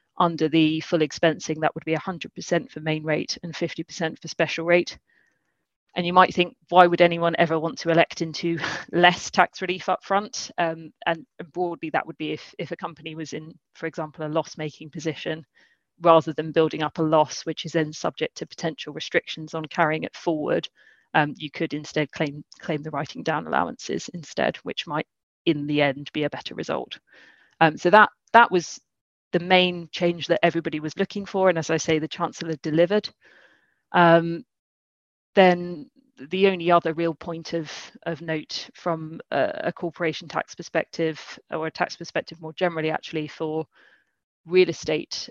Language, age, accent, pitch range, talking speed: English, 30-49, British, 155-175 Hz, 175 wpm